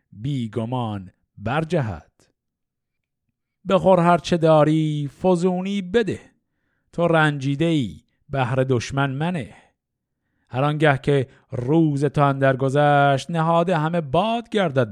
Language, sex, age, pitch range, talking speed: Persian, male, 50-69, 125-170 Hz, 95 wpm